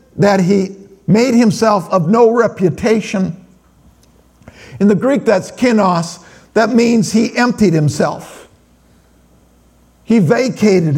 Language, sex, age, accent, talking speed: English, male, 50-69, American, 105 wpm